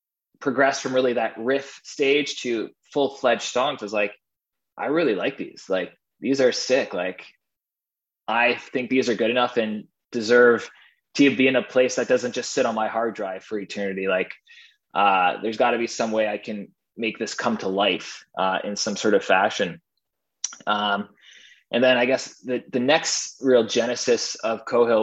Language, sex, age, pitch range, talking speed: English, male, 20-39, 105-125 Hz, 185 wpm